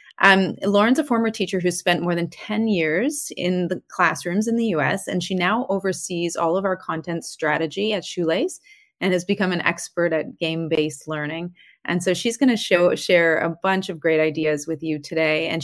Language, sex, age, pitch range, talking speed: English, female, 30-49, 160-210 Hz, 195 wpm